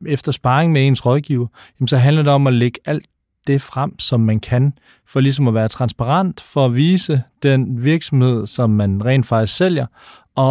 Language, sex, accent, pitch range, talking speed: Danish, male, native, 120-155 Hz, 190 wpm